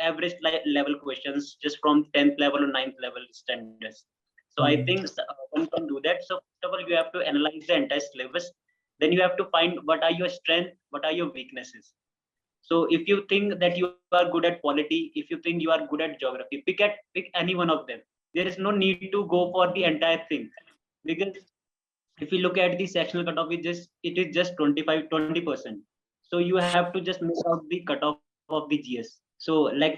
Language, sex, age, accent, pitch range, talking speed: Hindi, male, 20-39, native, 145-175 Hz, 220 wpm